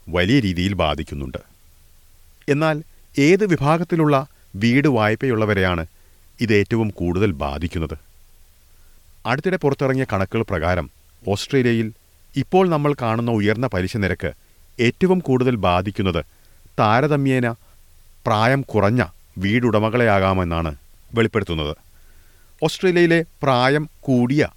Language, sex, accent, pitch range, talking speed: Malayalam, male, native, 90-130 Hz, 85 wpm